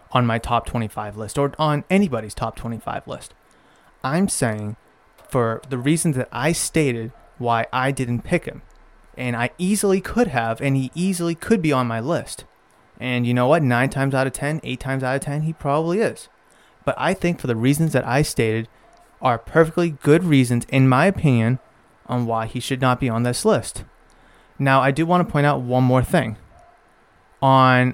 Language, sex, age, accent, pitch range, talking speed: English, male, 30-49, American, 120-155 Hz, 195 wpm